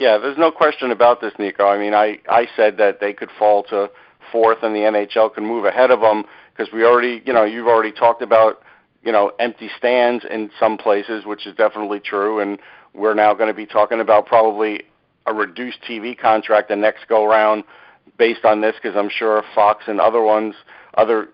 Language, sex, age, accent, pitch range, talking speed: English, male, 50-69, American, 110-130 Hz, 210 wpm